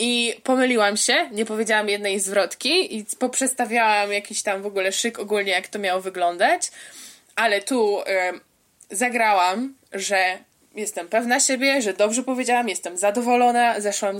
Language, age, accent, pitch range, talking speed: Polish, 20-39, native, 200-245 Hz, 140 wpm